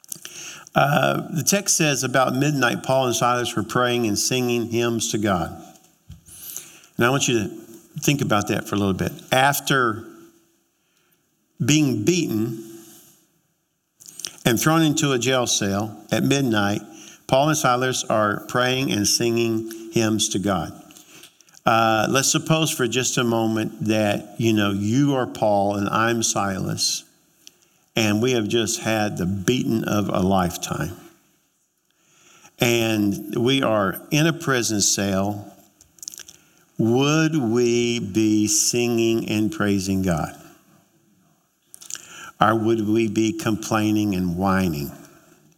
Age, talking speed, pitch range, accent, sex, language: 50-69, 125 wpm, 105-135 Hz, American, male, English